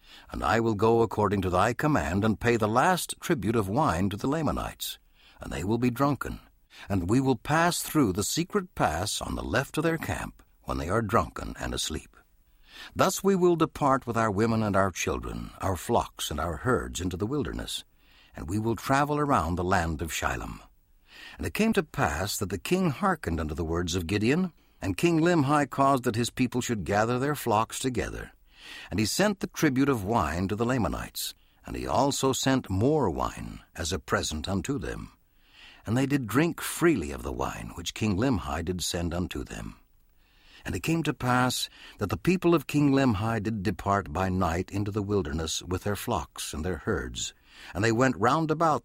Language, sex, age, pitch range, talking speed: English, male, 60-79, 90-140 Hz, 200 wpm